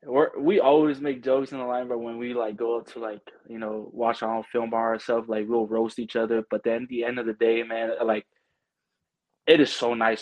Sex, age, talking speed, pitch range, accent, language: male, 20-39, 255 wpm, 110-120 Hz, American, English